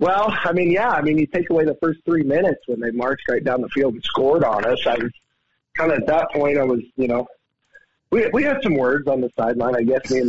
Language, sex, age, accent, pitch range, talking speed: English, male, 40-59, American, 130-160 Hz, 275 wpm